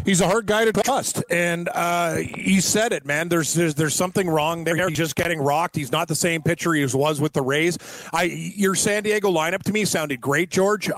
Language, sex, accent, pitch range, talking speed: English, male, American, 155-180 Hz, 230 wpm